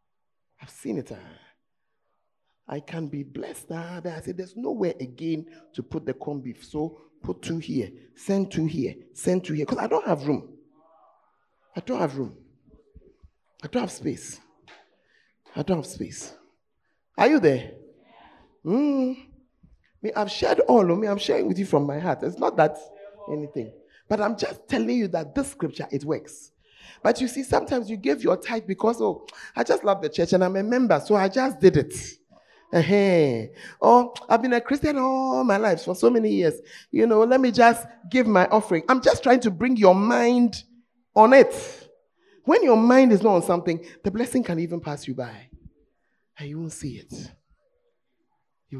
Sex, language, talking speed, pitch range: male, English, 185 wpm, 155-240 Hz